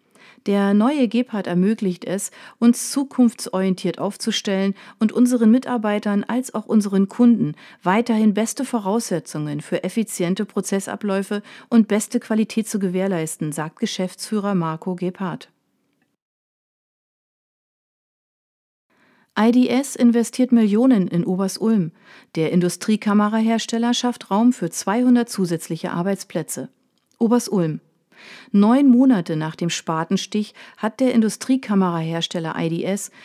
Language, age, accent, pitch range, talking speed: German, 40-59, German, 180-230 Hz, 95 wpm